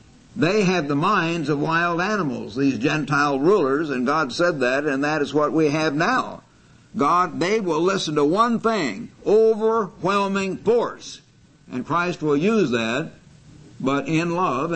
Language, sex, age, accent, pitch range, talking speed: English, male, 60-79, American, 135-160 Hz, 155 wpm